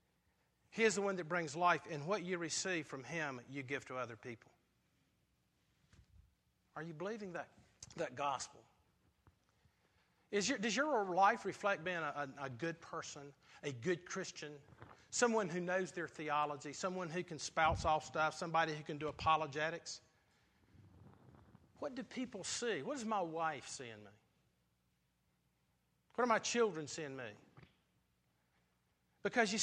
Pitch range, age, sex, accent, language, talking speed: 135-205 Hz, 50-69, male, American, English, 140 wpm